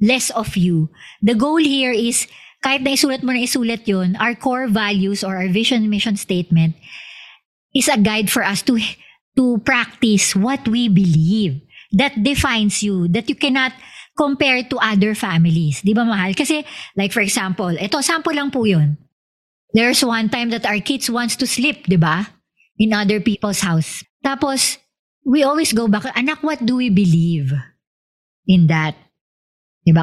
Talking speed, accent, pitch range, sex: 160 wpm, native, 185-260 Hz, male